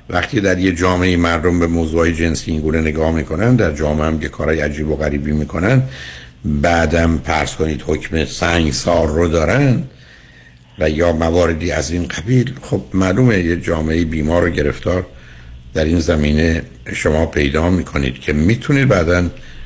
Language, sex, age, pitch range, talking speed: Persian, male, 60-79, 75-90 Hz, 155 wpm